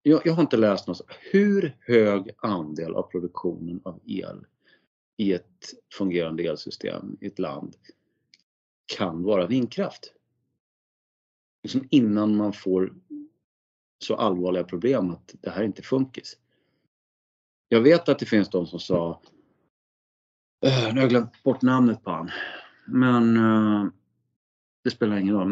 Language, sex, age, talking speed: Swedish, male, 30-49, 140 wpm